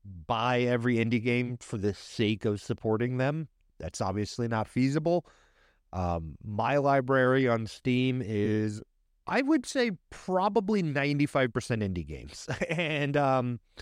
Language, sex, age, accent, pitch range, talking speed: English, male, 30-49, American, 95-130 Hz, 125 wpm